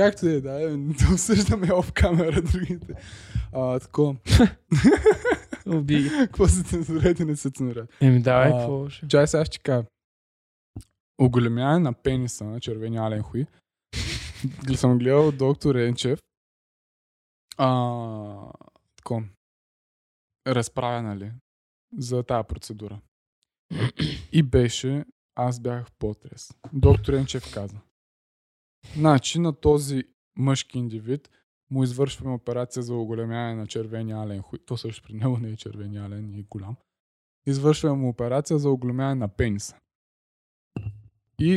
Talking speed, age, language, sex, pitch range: 110 wpm, 20-39, Bulgarian, male, 115-150 Hz